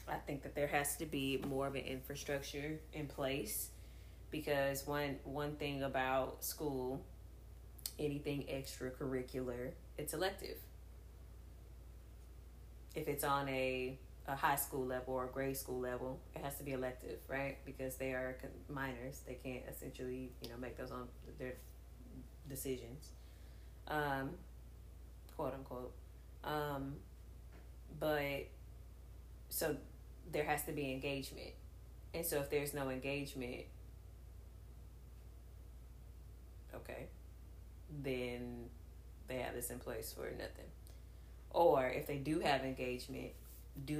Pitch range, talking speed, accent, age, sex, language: 95-140 Hz, 120 wpm, American, 20-39, female, English